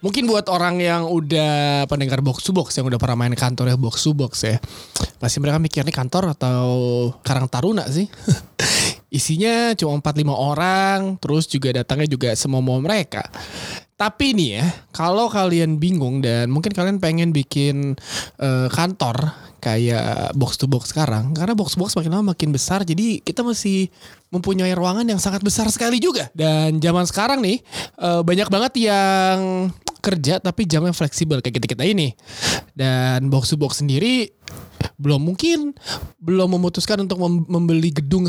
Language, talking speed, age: Indonesian, 145 wpm, 20-39